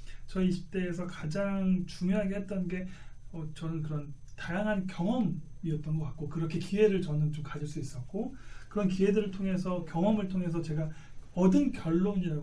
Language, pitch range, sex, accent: Korean, 155-205 Hz, male, native